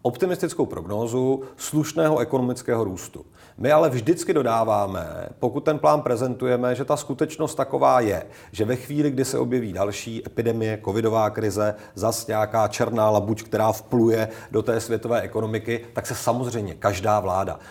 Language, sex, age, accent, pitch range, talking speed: Czech, male, 40-59, native, 110-130 Hz, 145 wpm